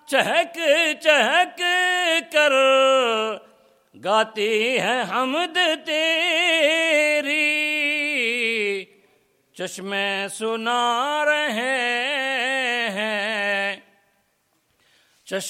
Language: English